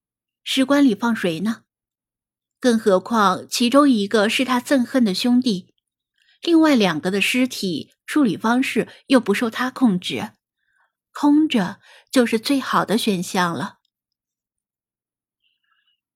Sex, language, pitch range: female, Chinese, 205-275 Hz